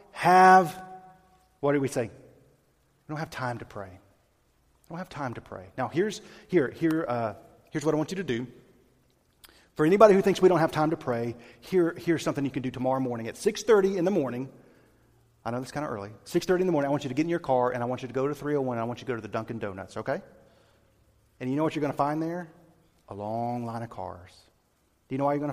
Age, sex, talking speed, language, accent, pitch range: 40-59, male, 260 wpm, English, American, 125-185 Hz